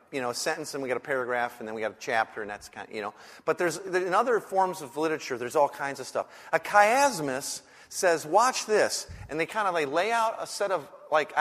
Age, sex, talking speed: 40-59, male, 260 wpm